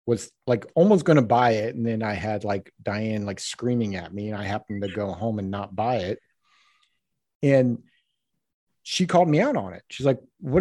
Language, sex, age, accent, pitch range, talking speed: English, male, 40-59, American, 100-135 Hz, 210 wpm